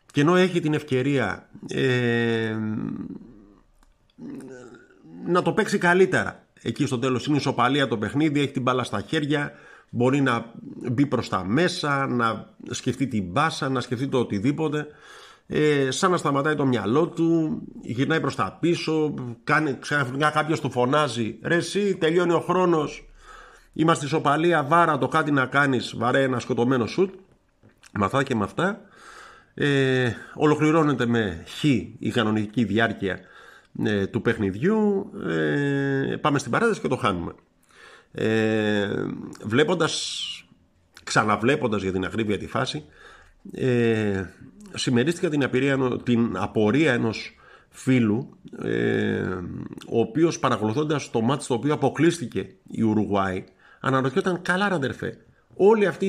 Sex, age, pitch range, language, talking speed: male, 50-69, 115-155 Hz, Greek, 130 wpm